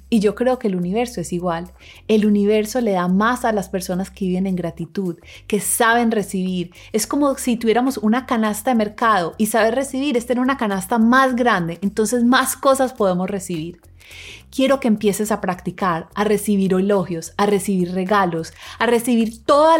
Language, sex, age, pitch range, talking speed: Spanish, female, 30-49, 185-245 Hz, 180 wpm